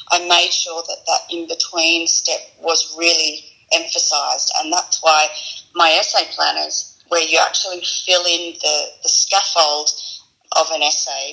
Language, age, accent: English, 30-49, Australian